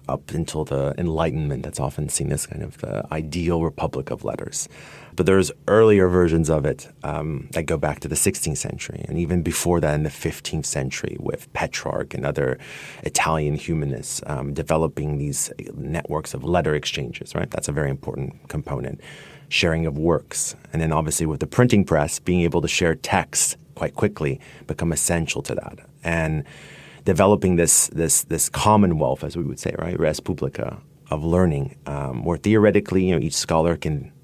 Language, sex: English, male